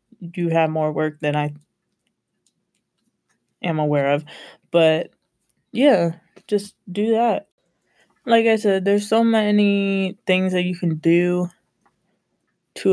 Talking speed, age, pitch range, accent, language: 120 wpm, 20-39, 165-205 Hz, American, English